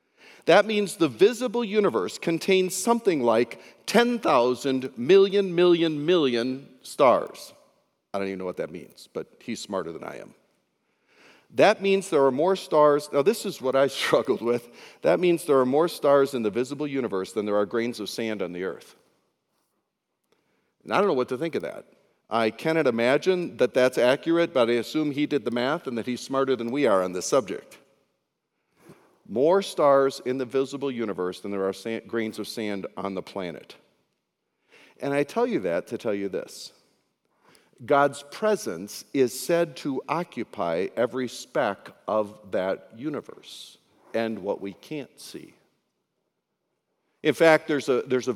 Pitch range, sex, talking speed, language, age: 120-170 Hz, male, 170 wpm, English, 50-69